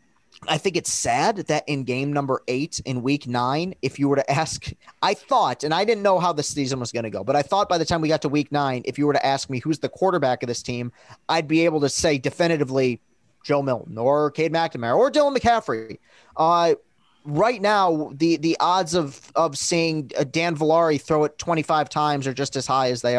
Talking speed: 230 wpm